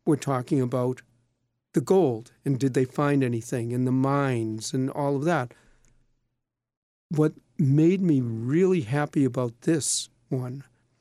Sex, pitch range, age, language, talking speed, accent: male, 125-170 Hz, 50-69, English, 135 wpm, American